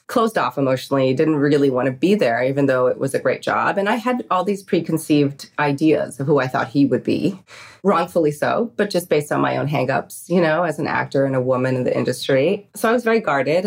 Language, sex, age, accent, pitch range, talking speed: English, female, 30-49, American, 140-200 Hz, 240 wpm